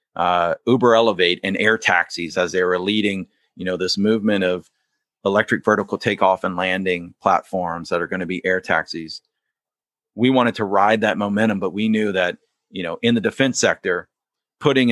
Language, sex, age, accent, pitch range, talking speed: English, male, 40-59, American, 95-115 Hz, 180 wpm